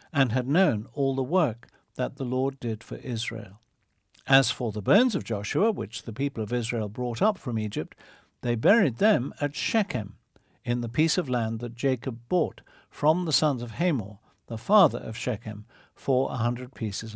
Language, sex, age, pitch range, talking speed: English, male, 60-79, 110-145 Hz, 185 wpm